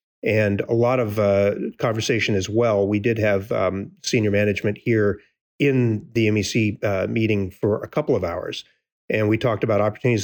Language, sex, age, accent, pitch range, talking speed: English, male, 40-59, American, 100-120 Hz, 175 wpm